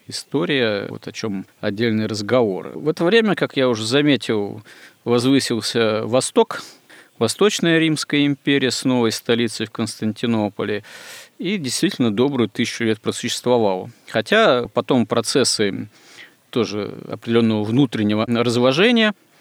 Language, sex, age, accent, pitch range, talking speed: Russian, male, 40-59, native, 110-145 Hz, 110 wpm